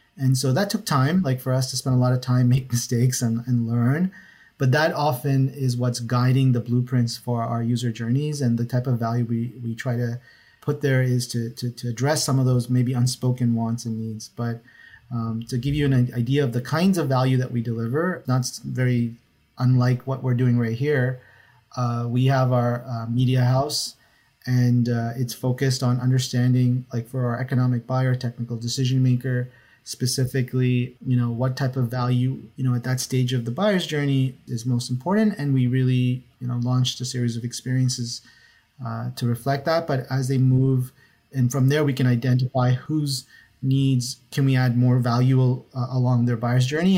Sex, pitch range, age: male, 120-130 Hz, 30-49